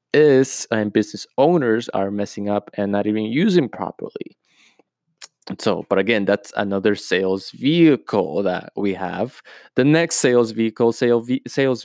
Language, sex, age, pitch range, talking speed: English, male, 20-39, 105-130 Hz, 150 wpm